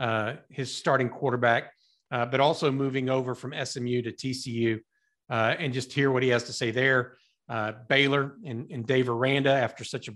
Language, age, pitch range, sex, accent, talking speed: English, 40-59, 125-155 Hz, male, American, 190 wpm